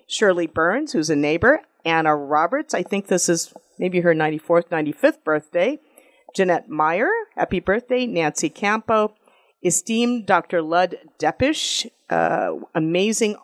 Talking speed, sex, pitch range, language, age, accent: 125 wpm, female, 160-220 Hz, English, 50-69, American